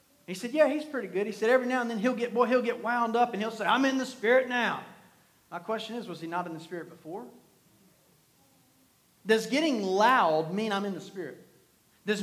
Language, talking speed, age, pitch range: English, 225 wpm, 40-59, 190-245 Hz